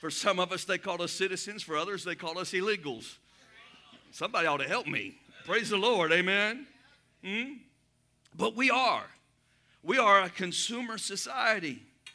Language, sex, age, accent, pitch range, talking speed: English, male, 50-69, American, 220-280 Hz, 165 wpm